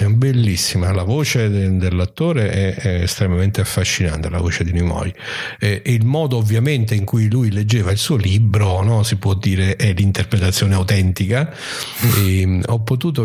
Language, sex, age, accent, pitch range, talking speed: Italian, male, 50-69, native, 95-125 Hz, 145 wpm